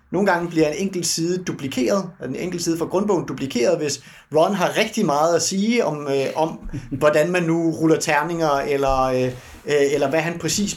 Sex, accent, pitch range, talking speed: male, native, 135-180 Hz, 190 wpm